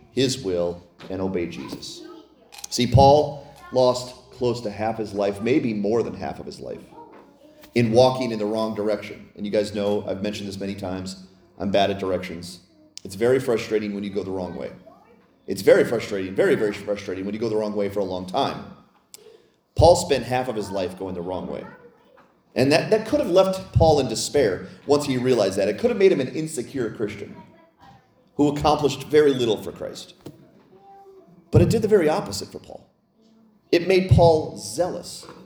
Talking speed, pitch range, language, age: 190 wpm, 105-155 Hz, English, 30-49